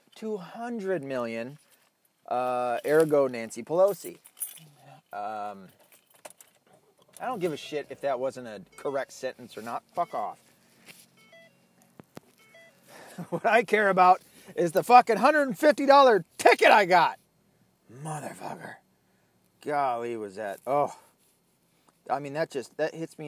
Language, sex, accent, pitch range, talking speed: English, male, American, 120-185 Hz, 115 wpm